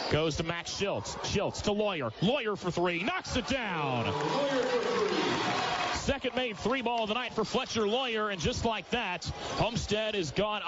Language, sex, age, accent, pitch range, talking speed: English, male, 30-49, American, 155-200 Hz, 170 wpm